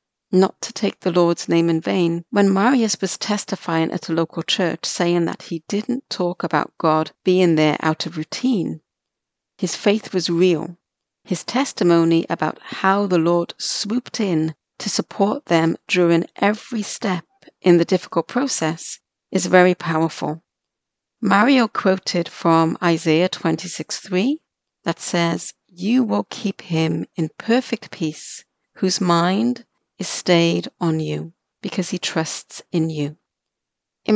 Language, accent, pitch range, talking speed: English, British, 165-205 Hz, 140 wpm